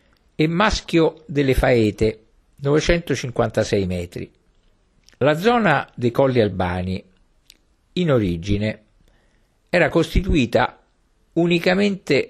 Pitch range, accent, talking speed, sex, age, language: 105-150 Hz, native, 80 wpm, male, 50-69, Italian